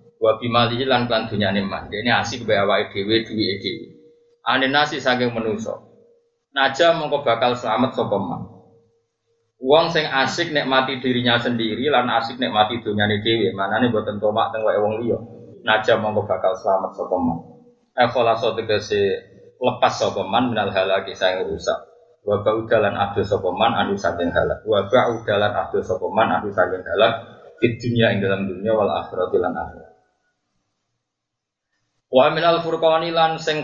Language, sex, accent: Indonesian, male, native